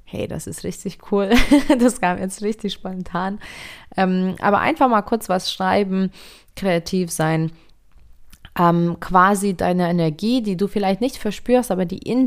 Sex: female